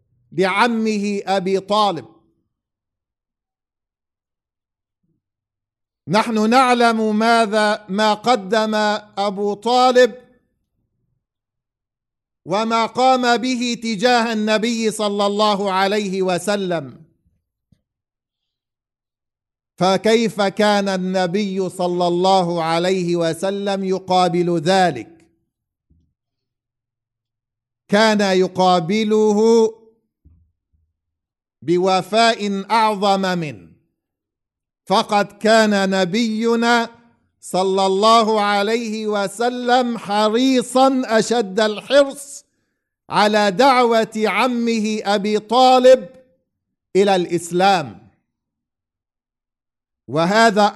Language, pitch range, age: English, 170-230 Hz, 50-69